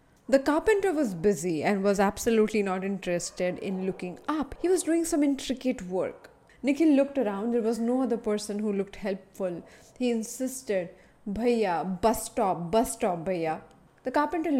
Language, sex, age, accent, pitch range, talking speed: English, female, 20-39, Indian, 180-240 Hz, 160 wpm